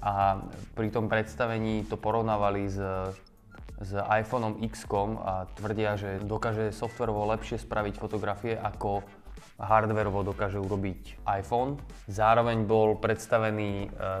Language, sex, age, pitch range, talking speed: Slovak, male, 20-39, 100-115 Hz, 115 wpm